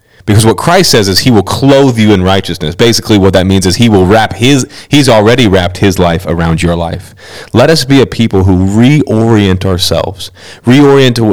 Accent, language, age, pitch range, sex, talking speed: American, English, 30-49, 95-115 Hz, male, 195 wpm